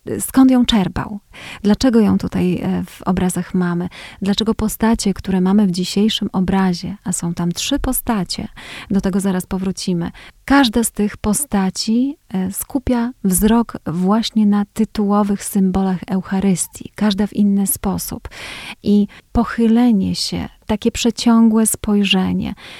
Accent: native